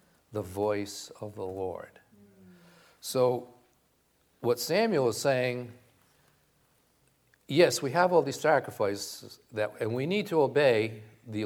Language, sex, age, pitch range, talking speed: English, male, 50-69, 100-125 Hz, 120 wpm